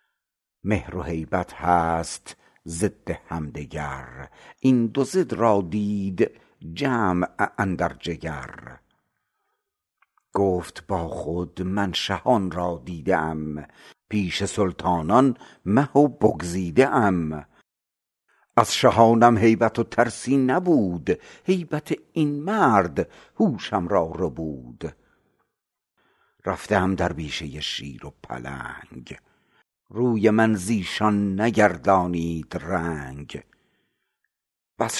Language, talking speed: Persian, 90 wpm